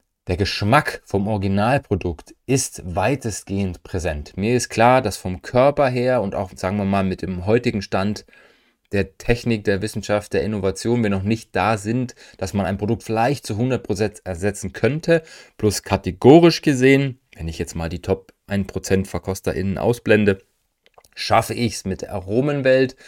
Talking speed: 160 wpm